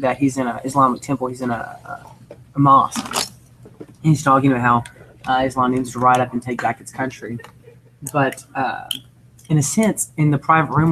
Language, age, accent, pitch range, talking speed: English, 20-39, American, 125-145 Hz, 200 wpm